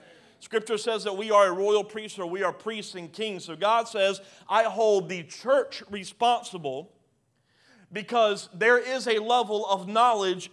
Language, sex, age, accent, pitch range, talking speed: English, male, 40-59, American, 190-235 Hz, 165 wpm